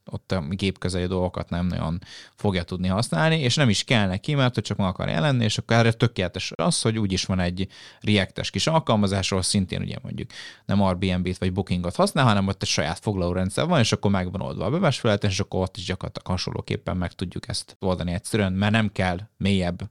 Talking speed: 205 wpm